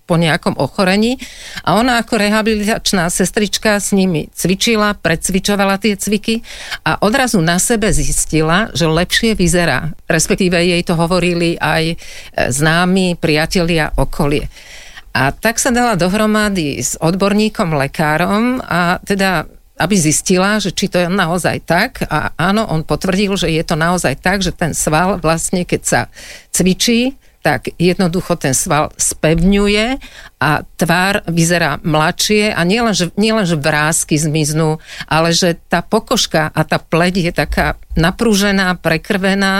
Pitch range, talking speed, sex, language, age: 165-205 Hz, 135 wpm, female, Slovak, 50-69